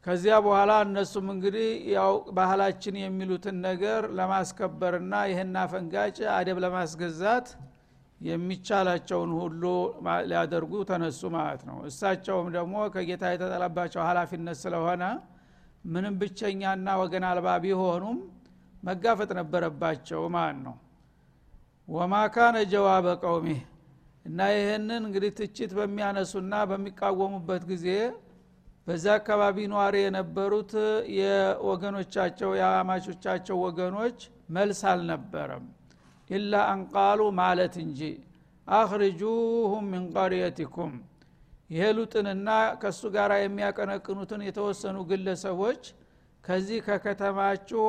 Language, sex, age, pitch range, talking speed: Amharic, male, 60-79, 175-205 Hz, 90 wpm